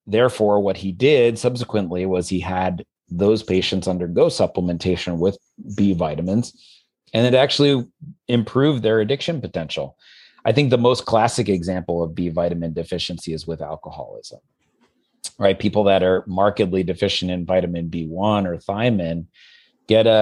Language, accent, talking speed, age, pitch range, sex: English, American, 140 wpm, 30-49, 90-110 Hz, male